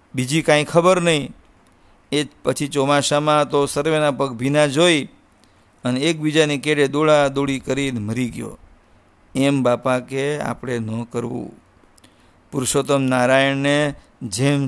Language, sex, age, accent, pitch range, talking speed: English, male, 50-69, Indian, 125-145 Hz, 145 wpm